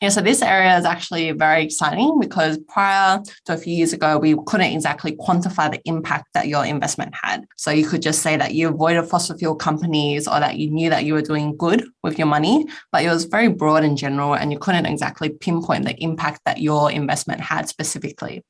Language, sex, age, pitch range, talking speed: English, female, 20-39, 155-190 Hz, 215 wpm